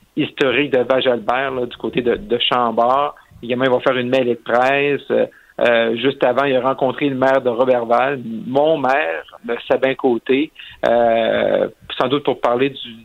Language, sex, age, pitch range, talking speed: French, male, 50-69, 125-145 Hz, 165 wpm